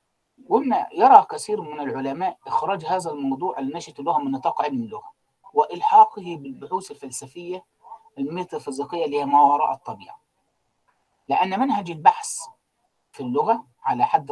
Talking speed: 125 wpm